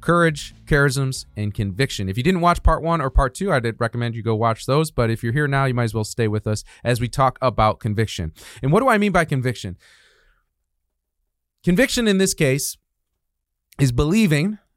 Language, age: English, 30-49